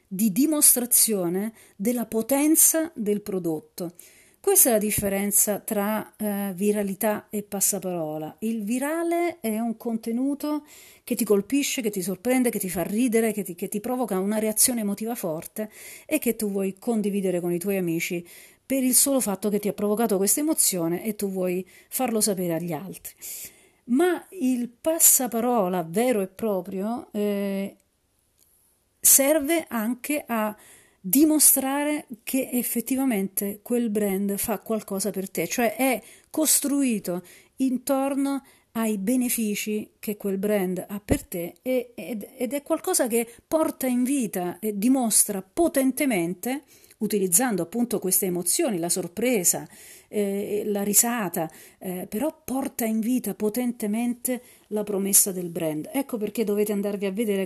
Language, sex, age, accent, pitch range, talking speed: Italian, female, 40-59, native, 195-255 Hz, 140 wpm